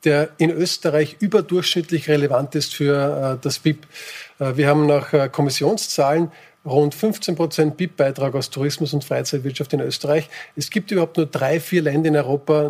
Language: German